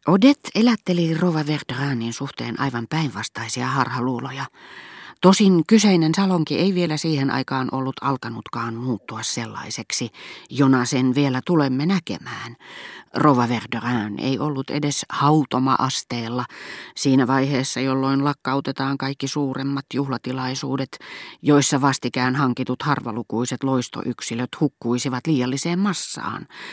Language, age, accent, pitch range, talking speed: Finnish, 30-49, native, 125-155 Hz, 100 wpm